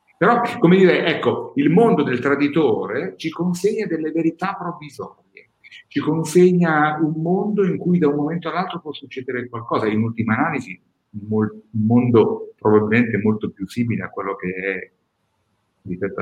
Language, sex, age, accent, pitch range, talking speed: Italian, male, 50-69, native, 110-165 Hz, 150 wpm